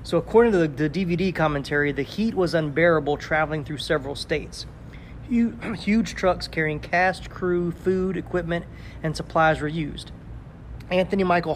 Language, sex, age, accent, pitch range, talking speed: English, male, 30-49, American, 145-170 Hz, 150 wpm